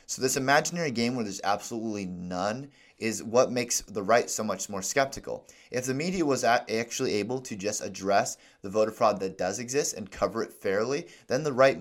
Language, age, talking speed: English, 30-49, 200 wpm